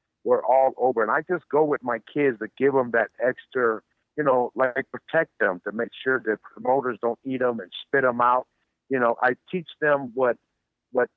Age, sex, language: 60-79, male, English